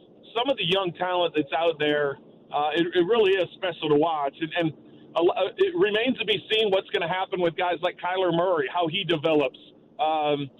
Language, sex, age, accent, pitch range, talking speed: English, male, 40-59, American, 160-195 Hz, 210 wpm